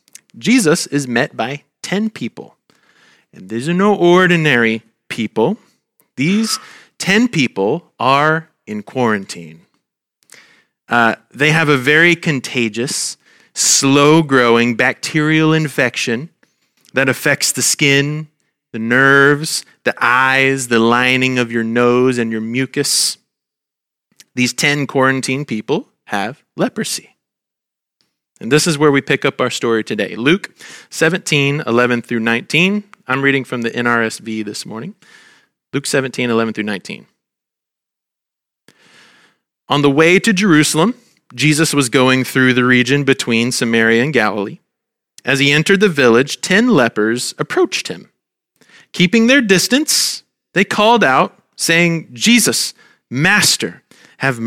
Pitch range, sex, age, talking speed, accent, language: 120-165 Hz, male, 30-49, 120 wpm, American, English